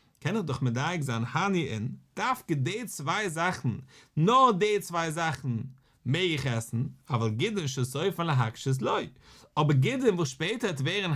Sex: male